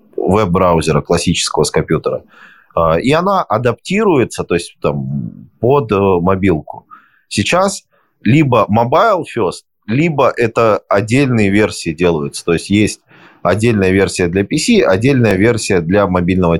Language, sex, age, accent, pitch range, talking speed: Russian, male, 20-39, native, 90-120 Hz, 115 wpm